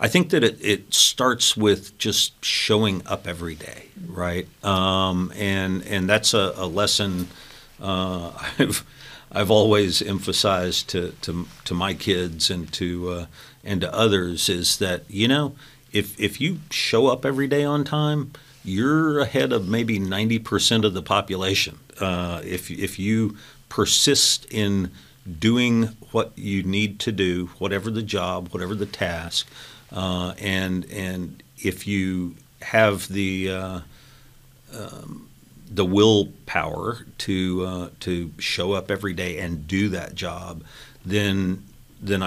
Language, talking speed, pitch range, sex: English, 140 wpm, 90-110 Hz, male